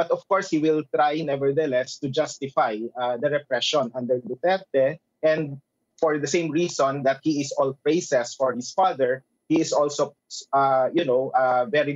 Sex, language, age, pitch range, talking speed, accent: male, English, 30-49, 130-160 Hz, 175 wpm, Filipino